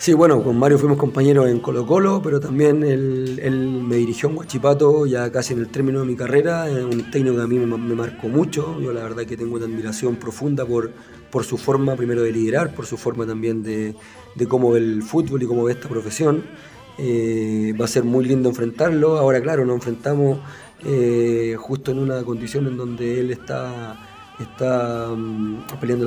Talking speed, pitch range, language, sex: 195 wpm, 120-140 Hz, Spanish, male